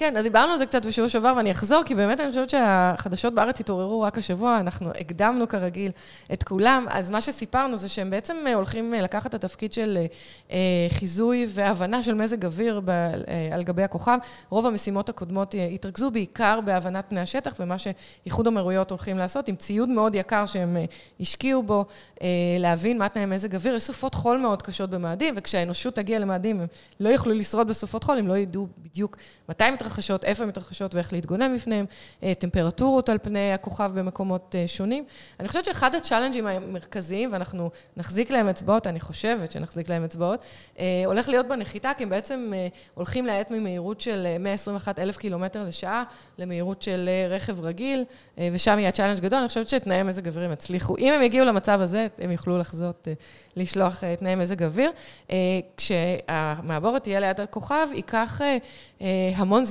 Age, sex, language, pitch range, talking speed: 20-39, female, Hebrew, 185-230 Hz, 150 wpm